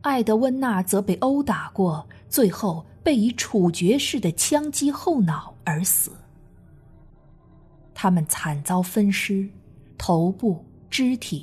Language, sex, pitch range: Chinese, female, 170-235 Hz